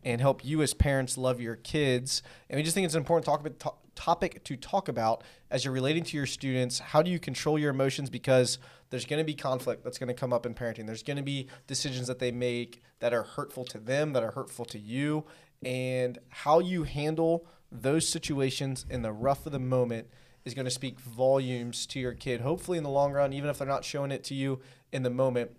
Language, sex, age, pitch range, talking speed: English, male, 20-39, 120-140 Hz, 220 wpm